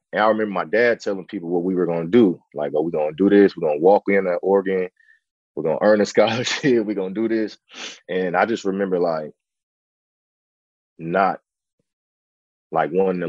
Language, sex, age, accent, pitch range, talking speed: English, male, 20-39, American, 85-110 Hz, 210 wpm